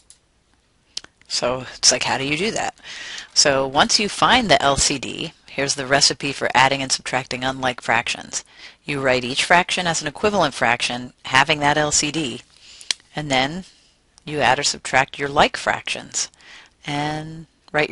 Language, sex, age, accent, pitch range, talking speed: English, female, 40-59, American, 130-155 Hz, 150 wpm